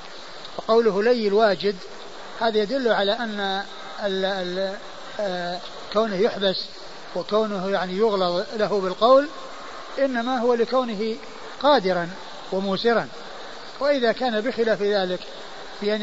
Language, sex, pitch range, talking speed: Arabic, male, 190-220 Hz, 95 wpm